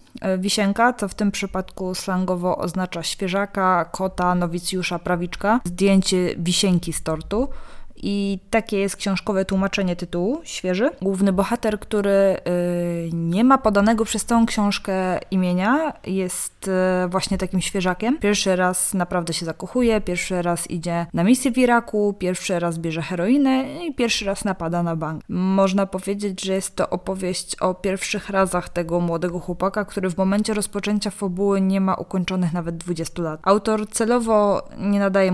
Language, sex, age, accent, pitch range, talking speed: Polish, female, 20-39, native, 180-205 Hz, 150 wpm